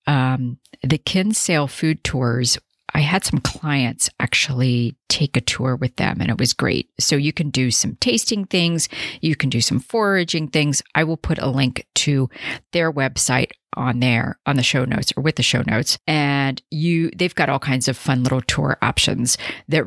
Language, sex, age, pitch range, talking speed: English, female, 40-59, 130-165 Hz, 185 wpm